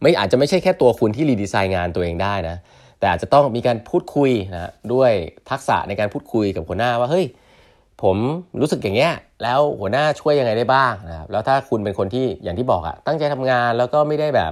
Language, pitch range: Thai, 90-120 Hz